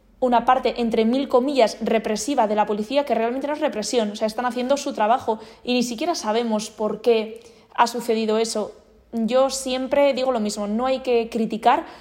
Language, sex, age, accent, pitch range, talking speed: Spanish, female, 20-39, Spanish, 215-250 Hz, 190 wpm